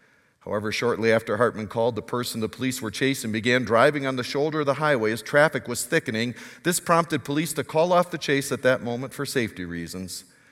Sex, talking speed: male, 210 wpm